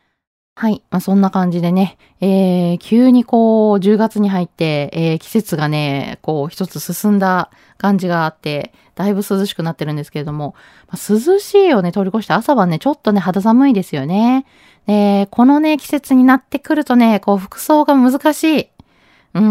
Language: Japanese